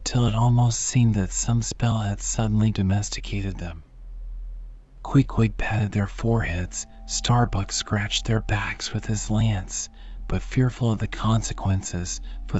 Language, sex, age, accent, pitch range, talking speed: English, male, 40-59, American, 100-115 Hz, 135 wpm